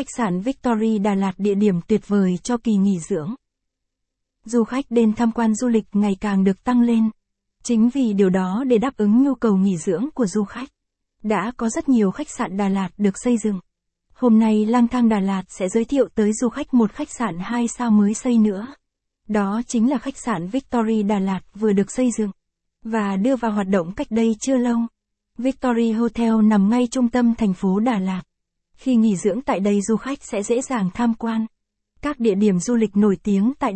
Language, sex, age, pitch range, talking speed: Vietnamese, female, 20-39, 200-240 Hz, 215 wpm